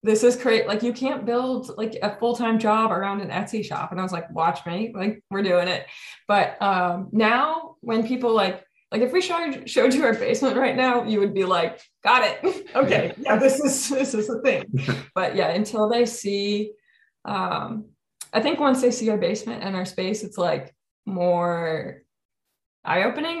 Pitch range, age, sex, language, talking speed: 195-250 Hz, 20-39, female, English, 190 wpm